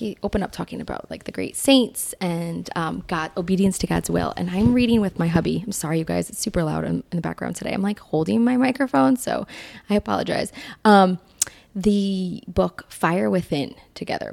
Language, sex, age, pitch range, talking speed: English, female, 20-39, 160-215 Hz, 195 wpm